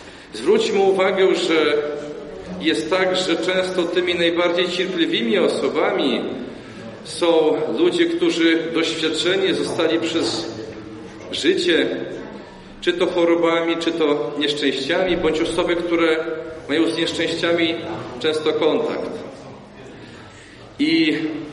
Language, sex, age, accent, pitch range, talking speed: Polish, male, 40-59, native, 160-195 Hz, 90 wpm